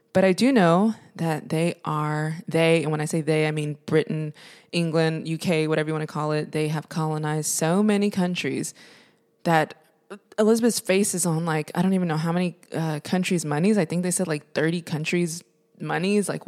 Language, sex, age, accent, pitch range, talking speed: English, female, 20-39, American, 155-195 Hz, 195 wpm